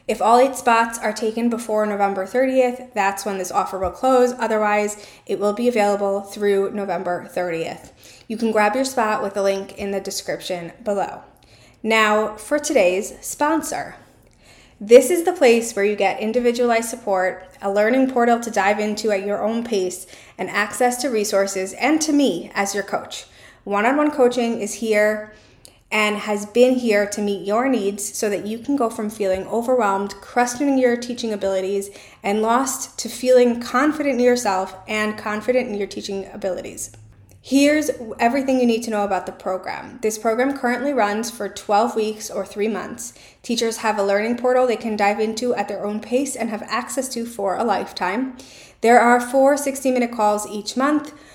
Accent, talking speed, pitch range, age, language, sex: American, 180 wpm, 200-245 Hz, 20-39, English, female